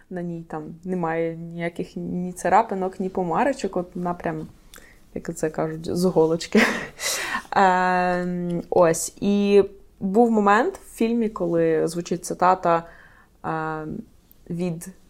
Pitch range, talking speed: 175-225 Hz, 100 wpm